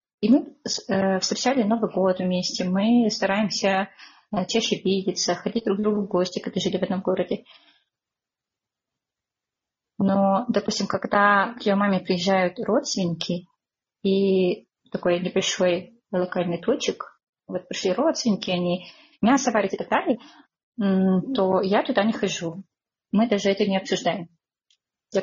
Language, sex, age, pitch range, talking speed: Russian, female, 20-39, 185-220 Hz, 130 wpm